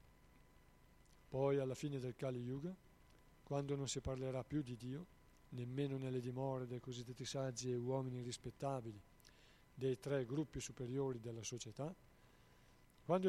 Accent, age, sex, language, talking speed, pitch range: native, 50-69, male, Italian, 130 wpm, 120-140 Hz